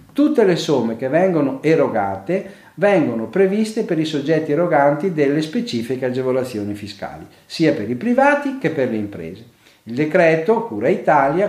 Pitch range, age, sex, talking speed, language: 120-185 Hz, 50-69, male, 145 wpm, Italian